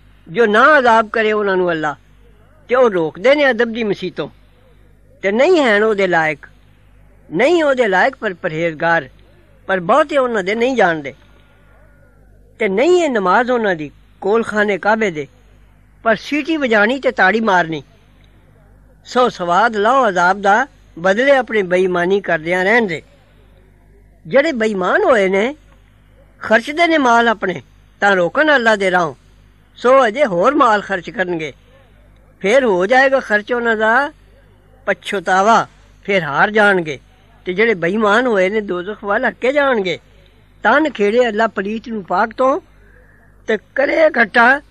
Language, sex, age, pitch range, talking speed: English, female, 60-79, 175-250 Hz, 85 wpm